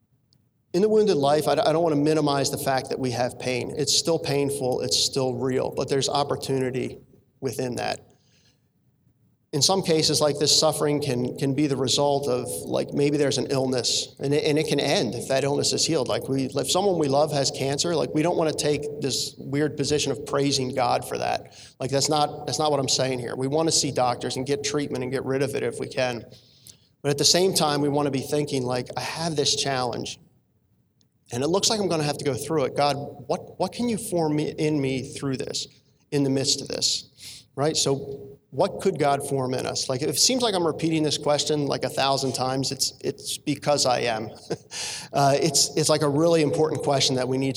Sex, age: male, 40-59